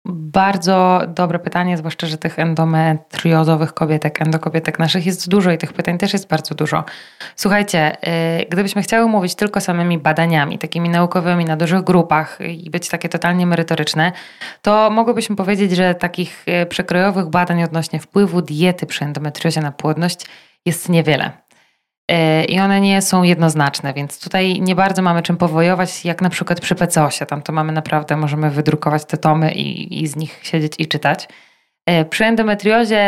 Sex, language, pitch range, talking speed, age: female, Polish, 155-185 Hz, 155 wpm, 20-39